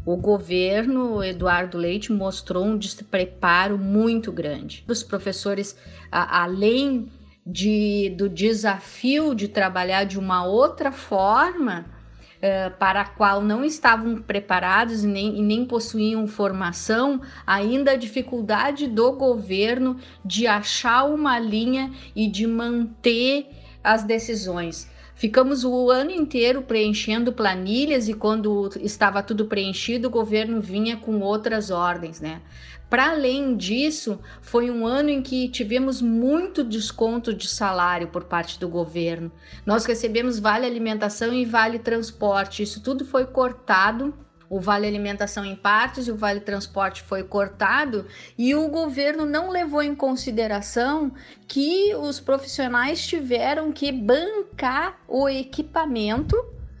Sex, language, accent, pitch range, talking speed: female, Portuguese, Brazilian, 200-255 Hz, 125 wpm